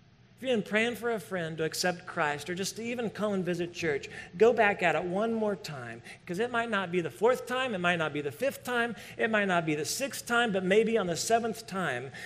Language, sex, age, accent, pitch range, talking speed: English, male, 40-59, American, 160-205 Hz, 265 wpm